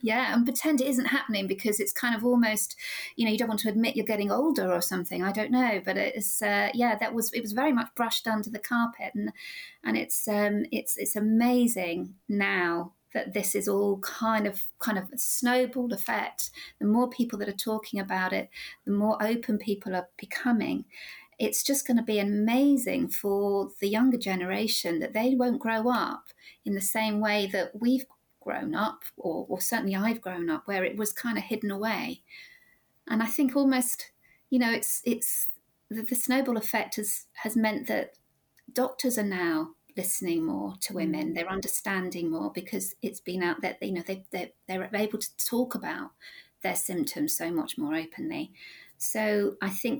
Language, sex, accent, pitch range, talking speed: English, female, British, 200-245 Hz, 190 wpm